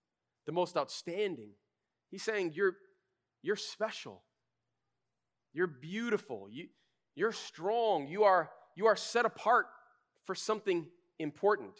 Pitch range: 140-215 Hz